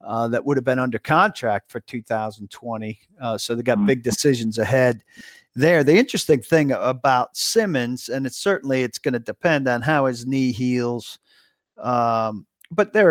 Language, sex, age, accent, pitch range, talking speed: English, male, 50-69, American, 115-145 Hz, 170 wpm